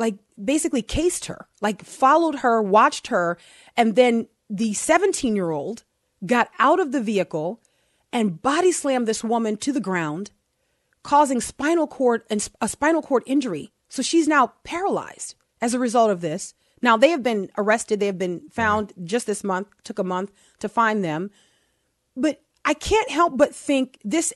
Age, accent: 30-49, American